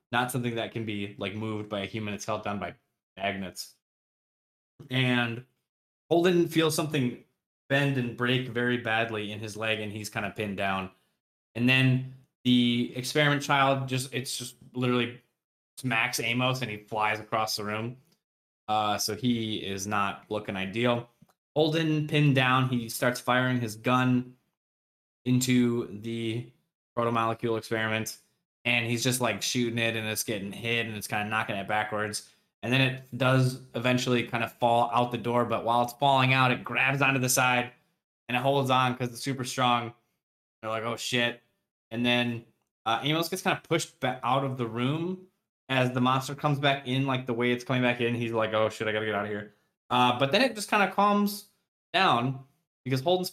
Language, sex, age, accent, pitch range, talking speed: English, male, 20-39, American, 110-135 Hz, 185 wpm